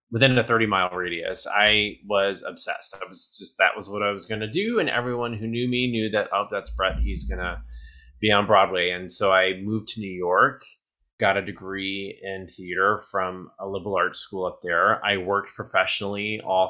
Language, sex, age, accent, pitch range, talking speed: English, male, 20-39, American, 95-120 Hz, 205 wpm